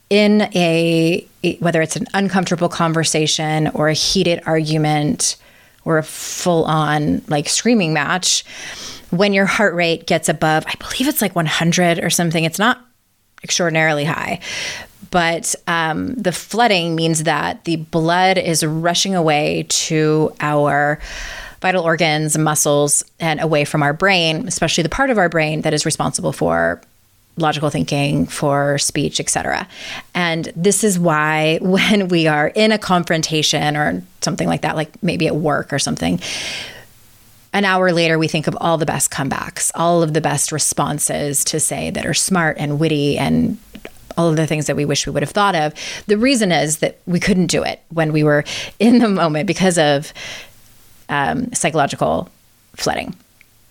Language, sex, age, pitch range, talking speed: English, female, 20-39, 150-185 Hz, 160 wpm